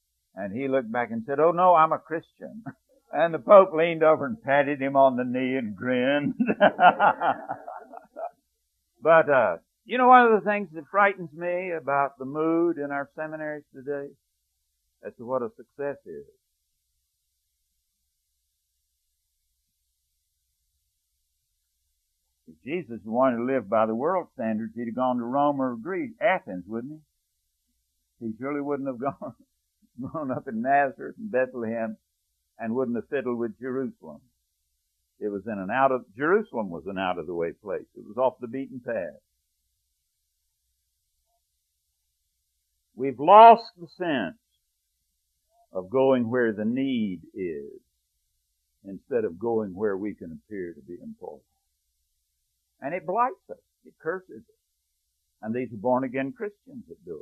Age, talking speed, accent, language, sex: 60-79, 140 wpm, American, English, male